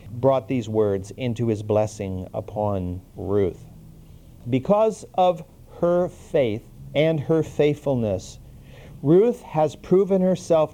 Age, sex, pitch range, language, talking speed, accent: 50-69, male, 110-155 Hz, English, 105 wpm, American